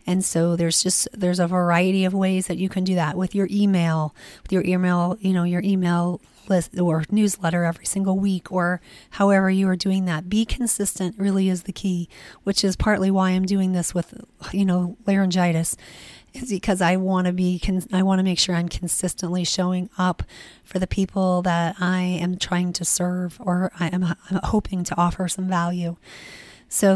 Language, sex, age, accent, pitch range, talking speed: English, female, 30-49, American, 180-195 Hz, 190 wpm